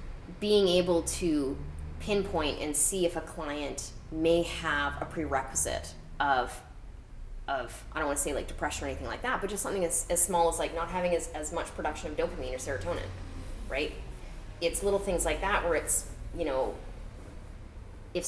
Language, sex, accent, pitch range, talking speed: English, female, American, 100-160 Hz, 180 wpm